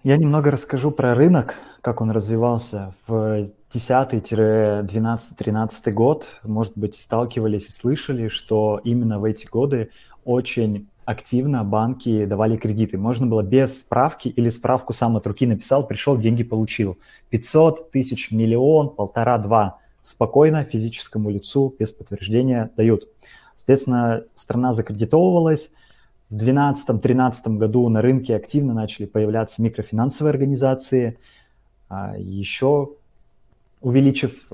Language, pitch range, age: Russian, 110-130 Hz, 20-39